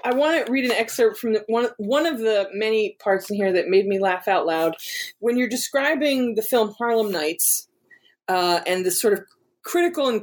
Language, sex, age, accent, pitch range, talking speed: English, female, 30-49, American, 200-260 Hz, 210 wpm